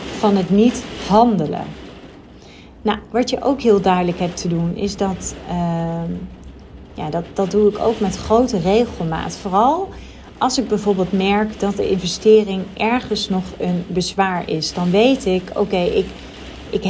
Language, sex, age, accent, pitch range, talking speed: Dutch, female, 40-59, Dutch, 185-230 Hz, 155 wpm